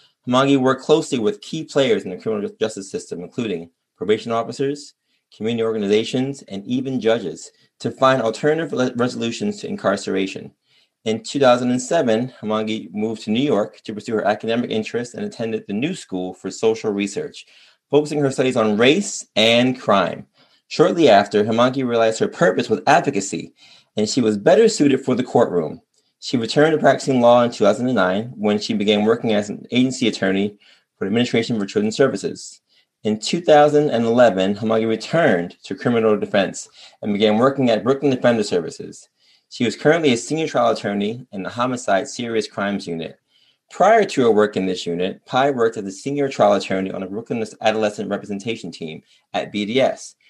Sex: male